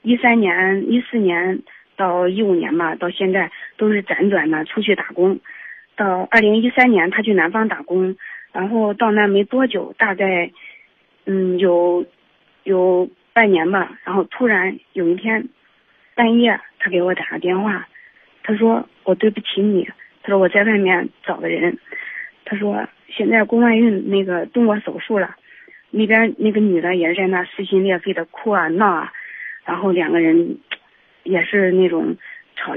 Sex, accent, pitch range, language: female, native, 190-245 Hz, Chinese